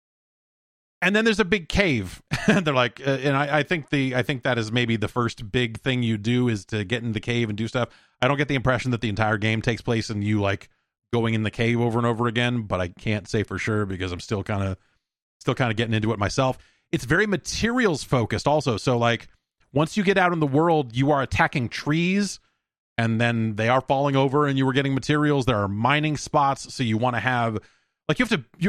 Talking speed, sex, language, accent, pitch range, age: 245 wpm, male, English, American, 115-150 Hz, 30-49